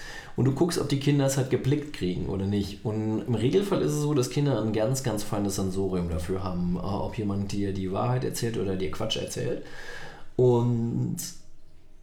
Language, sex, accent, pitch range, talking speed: German, male, German, 100-135 Hz, 190 wpm